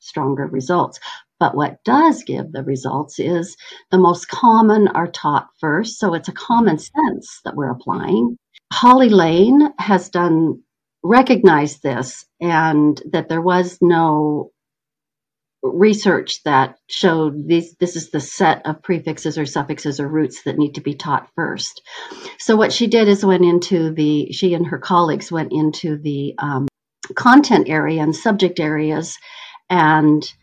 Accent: American